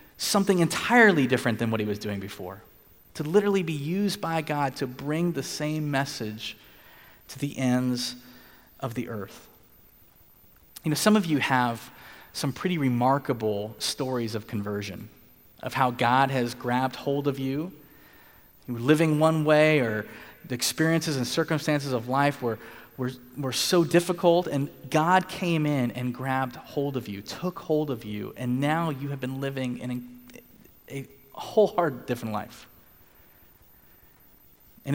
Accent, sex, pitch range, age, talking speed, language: American, male, 120-160 Hz, 30-49, 150 wpm, English